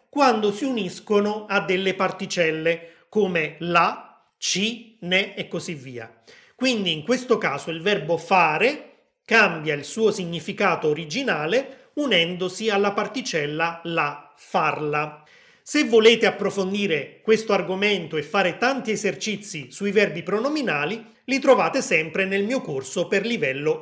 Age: 30-49